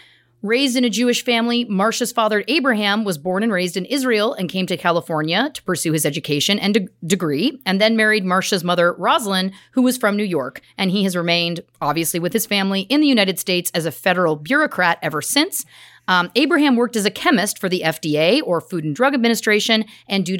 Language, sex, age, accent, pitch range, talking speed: English, female, 30-49, American, 170-245 Hz, 205 wpm